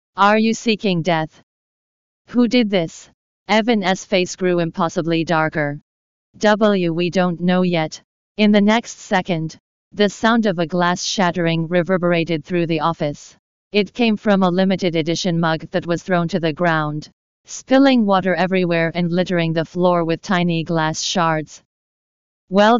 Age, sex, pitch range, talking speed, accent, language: 40-59, female, 165-200 Hz, 145 wpm, American, English